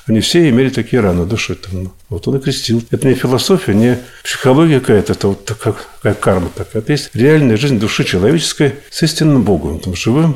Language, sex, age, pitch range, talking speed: Russian, male, 50-69, 105-140 Hz, 185 wpm